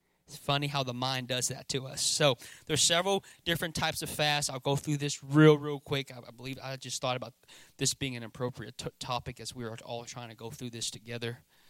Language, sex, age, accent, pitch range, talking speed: English, male, 30-49, American, 125-150 Hz, 230 wpm